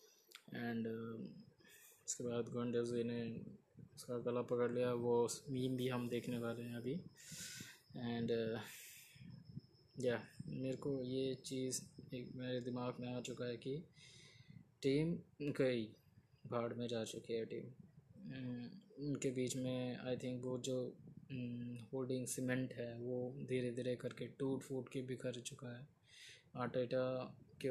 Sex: male